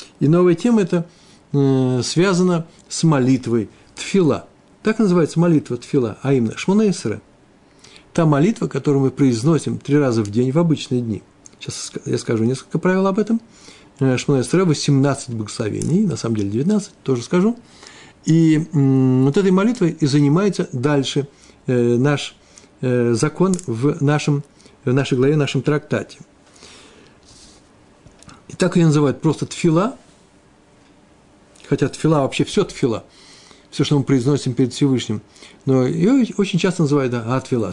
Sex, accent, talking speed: male, native, 140 wpm